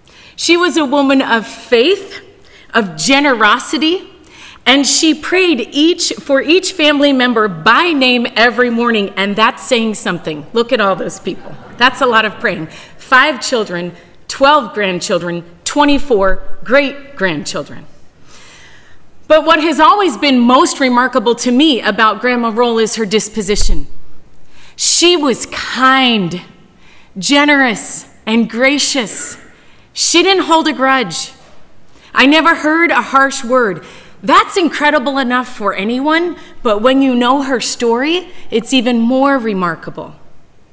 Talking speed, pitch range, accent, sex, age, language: 130 wpm, 220-285 Hz, American, female, 30-49, English